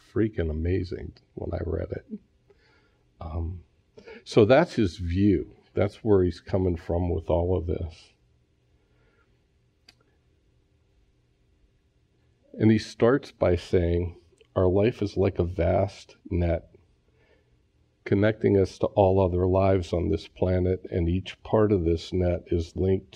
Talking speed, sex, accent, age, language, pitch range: 125 wpm, male, American, 50-69, English, 85-100 Hz